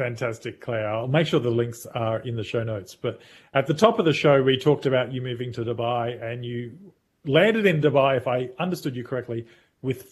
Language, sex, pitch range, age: English, male, 125-170 Hz, 30-49